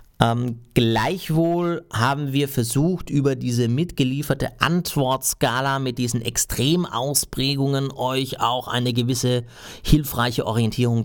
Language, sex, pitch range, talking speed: German, male, 115-150 Hz, 100 wpm